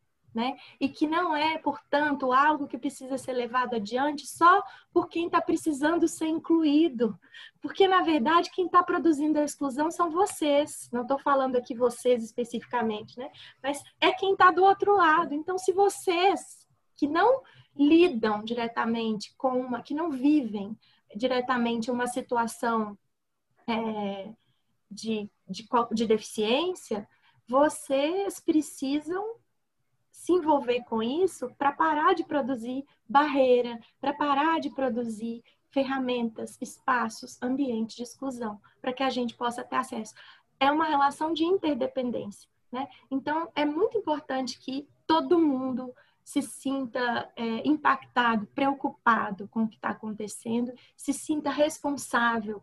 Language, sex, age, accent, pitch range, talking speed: Portuguese, female, 20-39, Brazilian, 235-305 Hz, 130 wpm